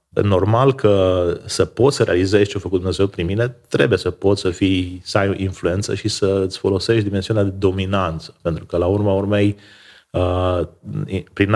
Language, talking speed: Romanian, 165 wpm